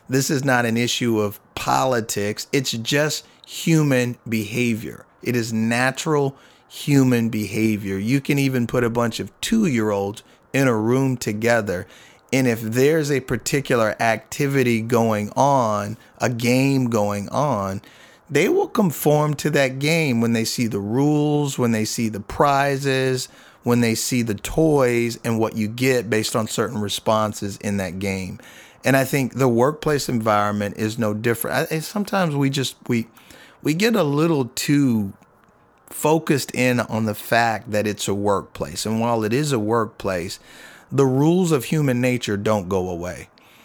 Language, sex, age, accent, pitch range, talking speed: English, male, 30-49, American, 110-135 Hz, 155 wpm